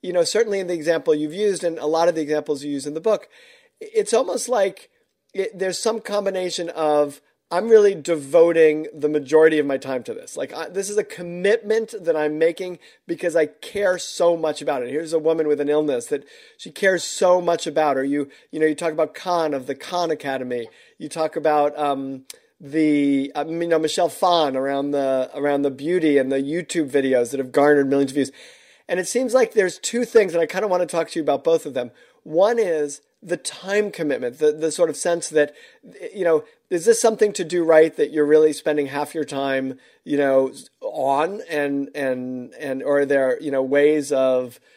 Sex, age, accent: male, 40-59, American